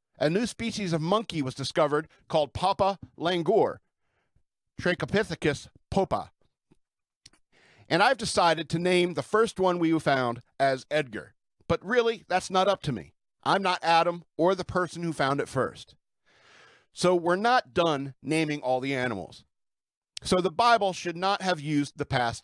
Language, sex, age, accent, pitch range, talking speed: English, male, 50-69, American, 150-195 Hz, 155 wpm